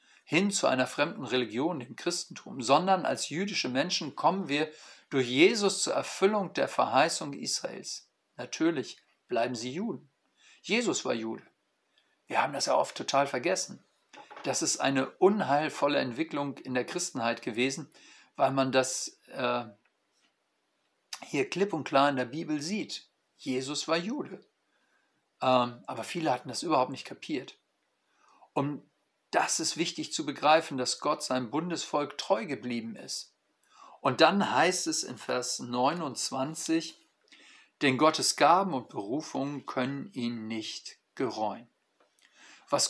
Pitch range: 130-175 Hz